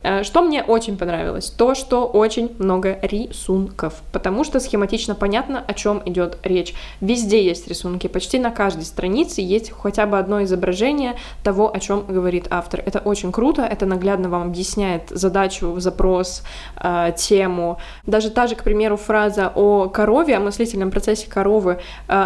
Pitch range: 190-225 Hz